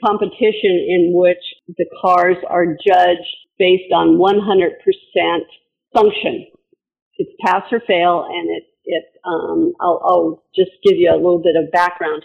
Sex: female